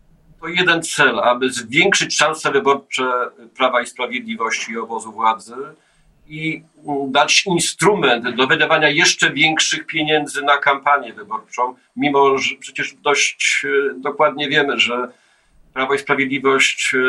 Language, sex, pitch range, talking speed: Polish, male, 125-145 Hz, 120 wpm